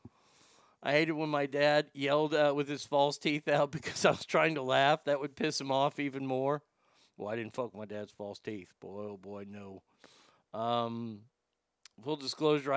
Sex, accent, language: male, American, English